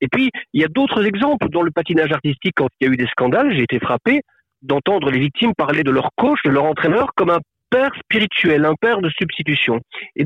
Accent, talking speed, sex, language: French, 235 wpm, male, French